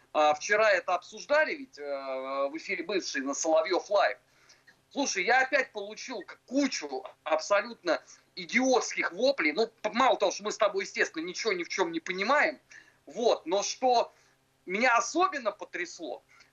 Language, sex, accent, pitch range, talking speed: Russian, male, native, 205-285 Hz, 140 wpm